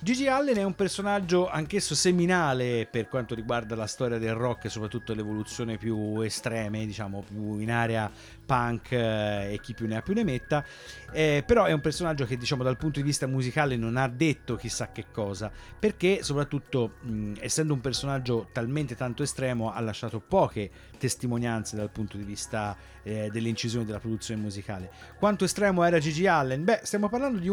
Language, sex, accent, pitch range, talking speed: Italian, male, native, 110-155 Hz, 180 wpm